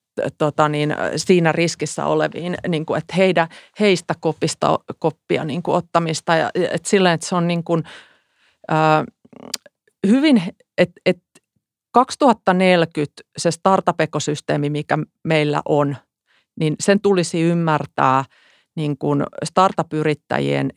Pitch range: 155-185 Hz